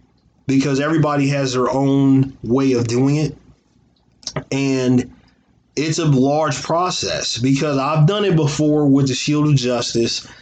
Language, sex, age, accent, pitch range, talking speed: English, male, 20-39, American, 125-140 Hz, 140 wpm